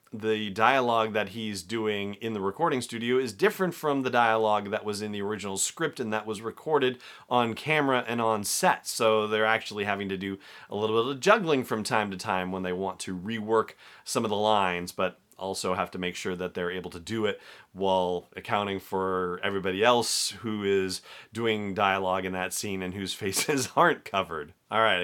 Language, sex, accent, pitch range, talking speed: English, male, American, 100-125 Hz, 200 wpm